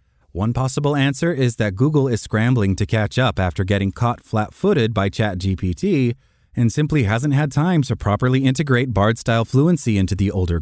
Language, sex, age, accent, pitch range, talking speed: English, male, 30-49, American, 95-130 Hz, 170 wpm